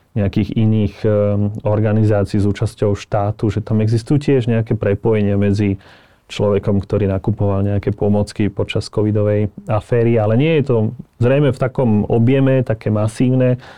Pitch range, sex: 105-125 Hz, male